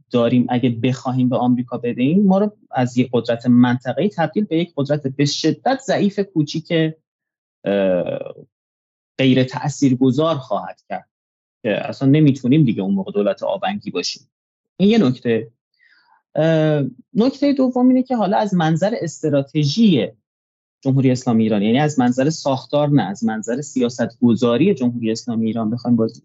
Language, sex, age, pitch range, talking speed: Persian, male, 30-49, 120-170 Hz, 135 wpm